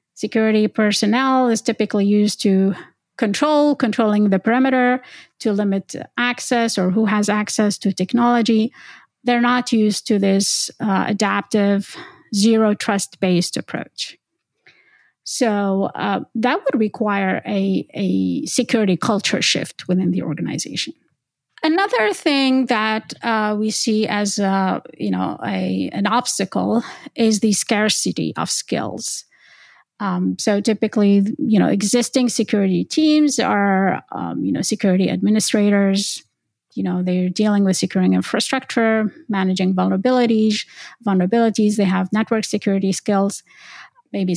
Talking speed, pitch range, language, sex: 120 wpm, 195-235 Hz, English, female